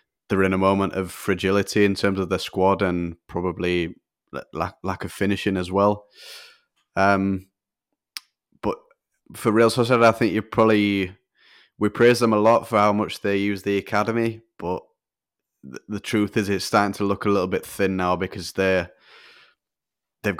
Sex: male